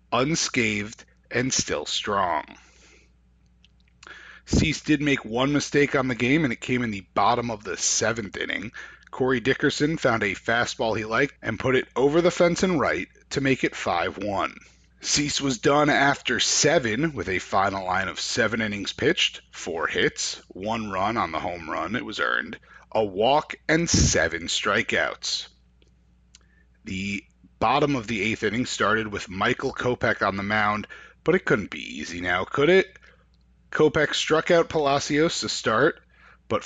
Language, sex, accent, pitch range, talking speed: English, male, American, 105-150 Hz, 160 wpm